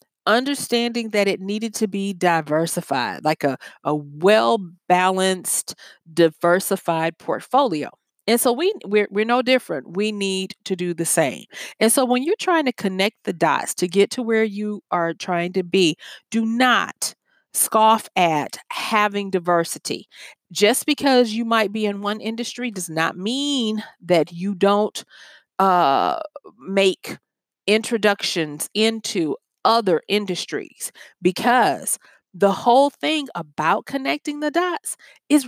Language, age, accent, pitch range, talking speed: English, 40-59, American, 175-225 Hz, 130 wpm